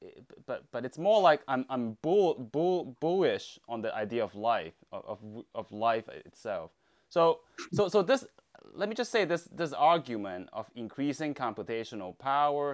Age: 20-39